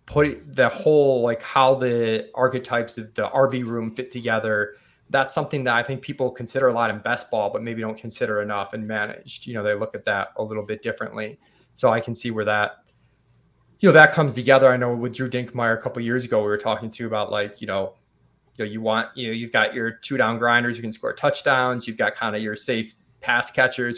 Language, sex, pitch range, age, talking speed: English, male, 110-130 Hz, 20-39, 240 wpm